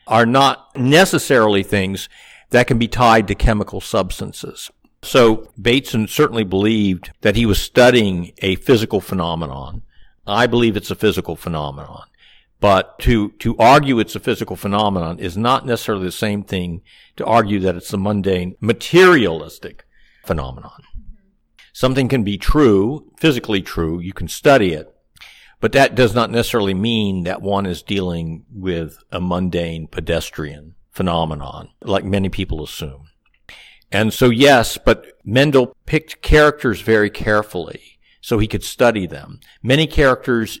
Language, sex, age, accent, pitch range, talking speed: English, male, 50-69, American, 90-120 Hz, 140 wpm